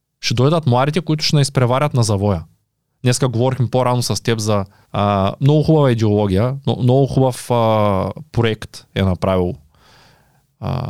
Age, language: 20-39, Bulgarian